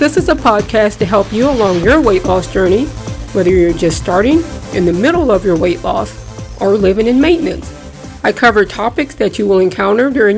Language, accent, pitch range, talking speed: English, American, 195-250 Hz, 200 wpm